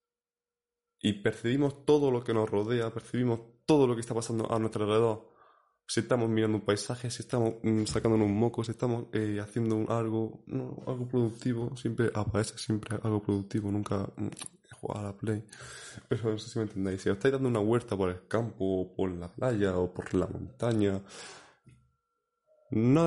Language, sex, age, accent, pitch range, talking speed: Spanish, male, 20-39, Spanish, 105-125 Hz, 180 wpm